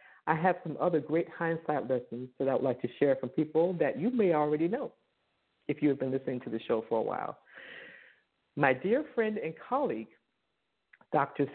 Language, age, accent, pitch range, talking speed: English, 50-69, American, 130-180 Hz, 190 wpm